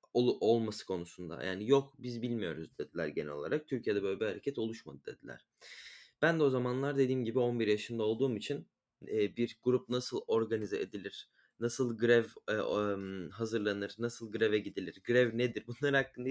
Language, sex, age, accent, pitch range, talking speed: Turkish, male, 20-39, native, 110-140 Hz, 145 wpm